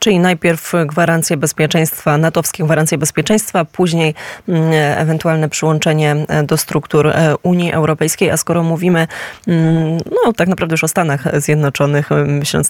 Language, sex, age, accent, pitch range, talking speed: Polish, female, 20-39, native, 155-175 Hz, 115 wpm